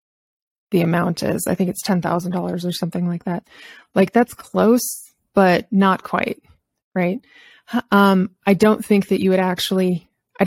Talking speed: 165 wpm